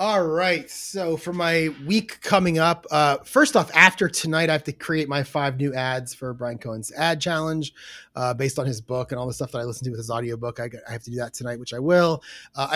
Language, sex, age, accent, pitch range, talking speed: English, male, 30-49, American, 135-175 Hz, 255 wpm